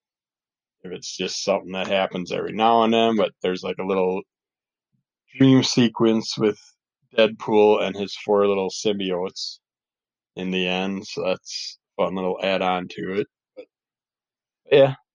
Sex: male